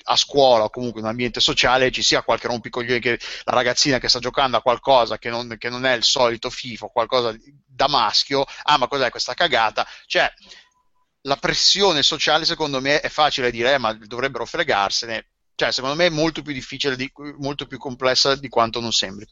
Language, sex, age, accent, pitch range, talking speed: Italian, male, 30-49, native, 120-150 Hz, 200 wpm